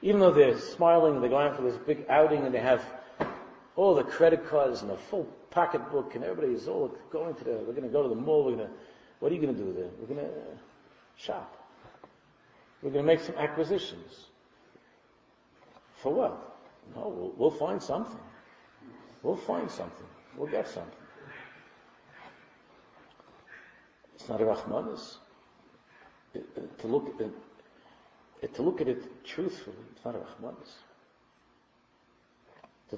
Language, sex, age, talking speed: English, male, 50-69, 160 wpm